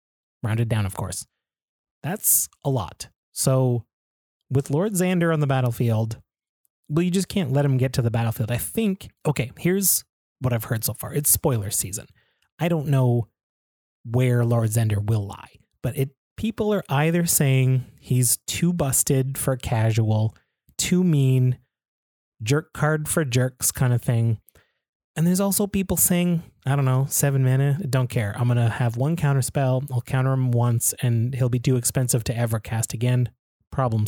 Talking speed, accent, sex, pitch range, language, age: 170 wpm, American, male, 115-145 Hz, English, 30-49